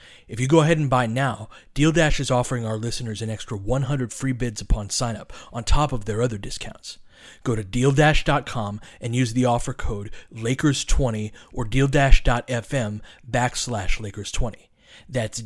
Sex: male